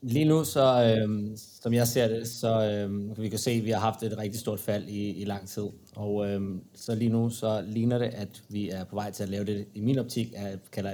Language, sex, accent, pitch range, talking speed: Danish, male, native, 100-115 Hz, 270 wpm